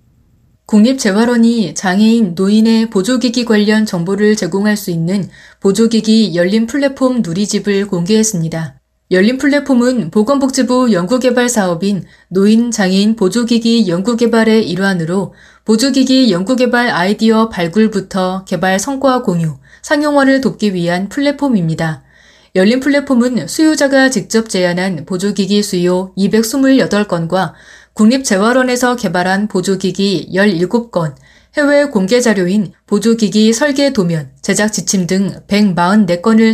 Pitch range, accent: 185-240 Hz, native